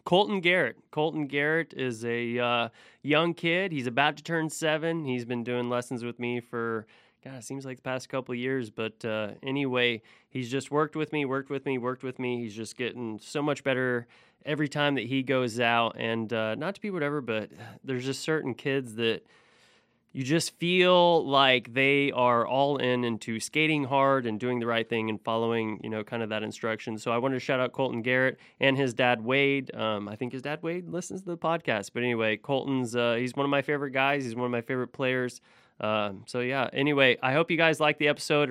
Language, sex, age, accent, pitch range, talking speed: English, male, 20-39, American, 115-140 Hz, 220 wpm